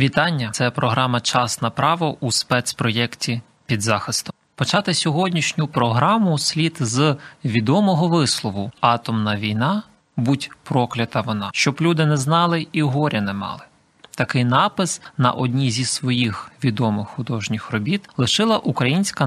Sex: male